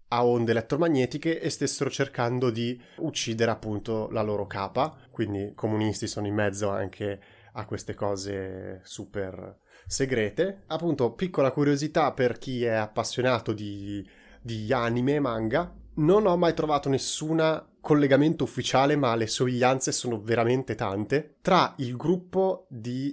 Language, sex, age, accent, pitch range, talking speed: Italian, male, 30-49, native, 110-140 Hz, 135 wpm